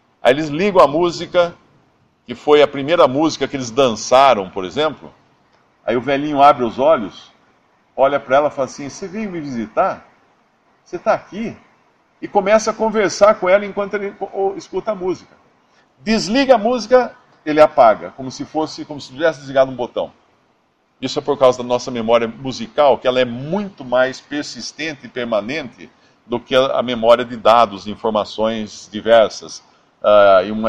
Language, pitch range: English, 120-160 Hz